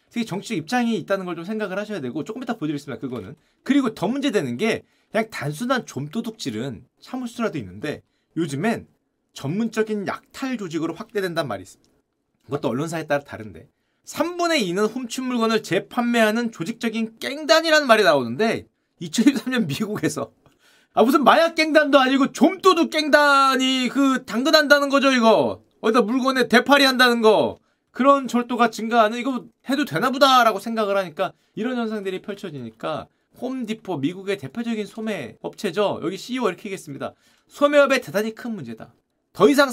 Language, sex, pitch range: Korean, male, 200-275 Hz